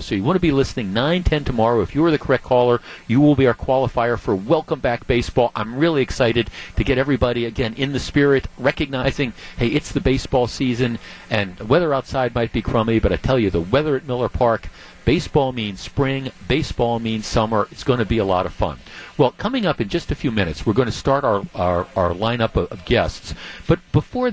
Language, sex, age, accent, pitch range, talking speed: English, male, 50-69, American, 105-135 Hz, 220 wpm